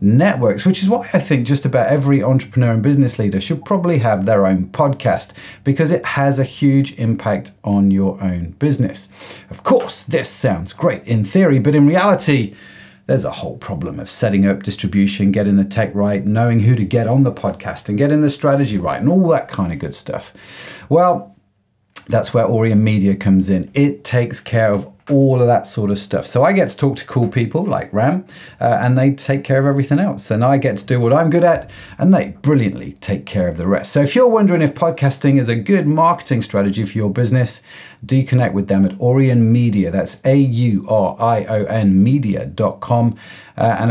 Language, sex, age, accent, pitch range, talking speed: English, male, 30-49, British, 100-140 Hz, 200 wpm